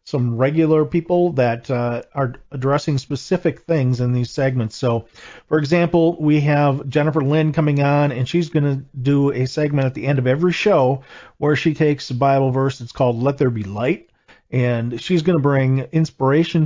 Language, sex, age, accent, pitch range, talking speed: English, male, 40-59, American, 125-150 Hz, 185 wpm